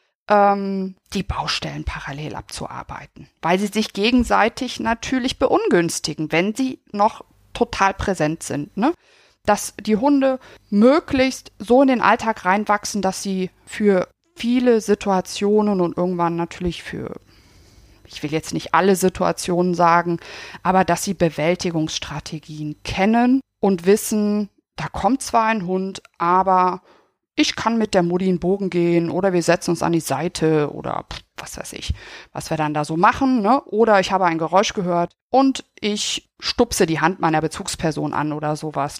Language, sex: German, female